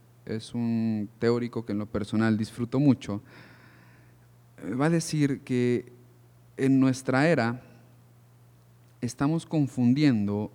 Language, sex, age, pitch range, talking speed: Spanish, male, 40-59, 110-140 Hz, 100 wpm